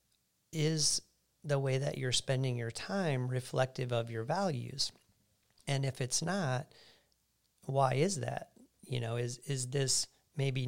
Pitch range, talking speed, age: 120-145 Hz, 140 wpm, 40-59